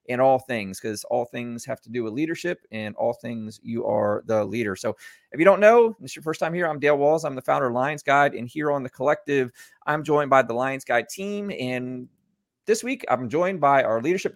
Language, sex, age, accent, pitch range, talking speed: English, male, 30-49, American, 120-165 Hz, 240 wpm